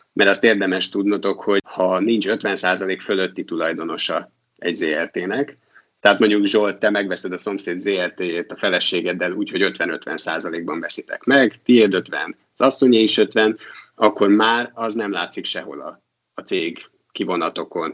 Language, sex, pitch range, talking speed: Hungarian, male, 95-110 Hz, 145 wpm